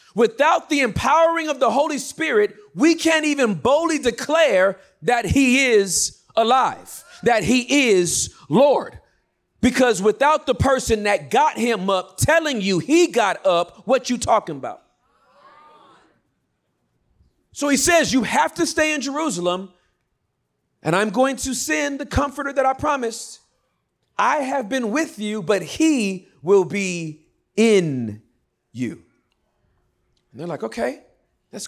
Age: 40-59